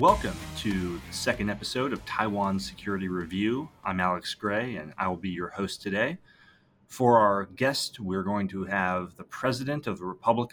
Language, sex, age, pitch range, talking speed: English, male, 30-49, 95-110 Hz, 175 wpm